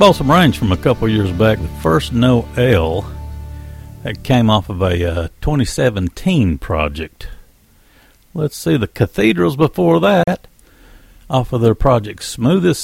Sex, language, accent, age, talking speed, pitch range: male, English, American, 60-79, 145 wpm, 90-135 Hz